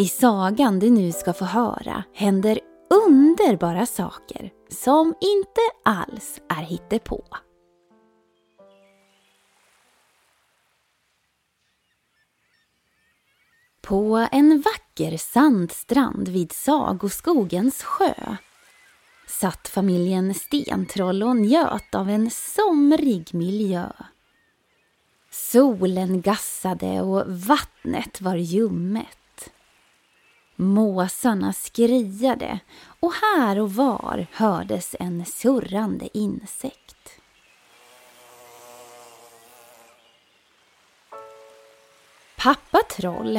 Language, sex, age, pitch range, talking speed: Swedish, female, 20-39, 170-255 Hz, 70 wpm